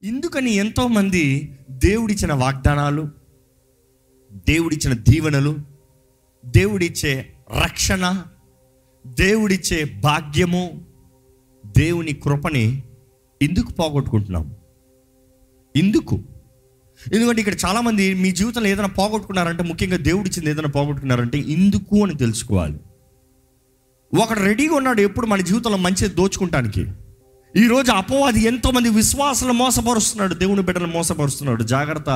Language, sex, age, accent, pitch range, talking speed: Telugu, male, 30-49, native, 130-200 Hz, 90 wpm